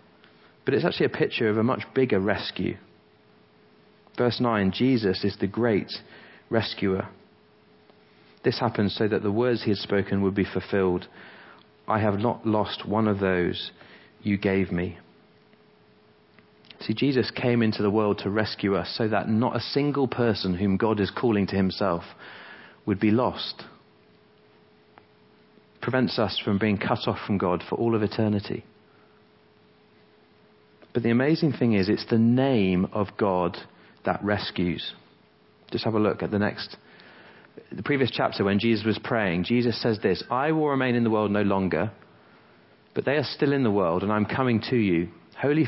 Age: 40-59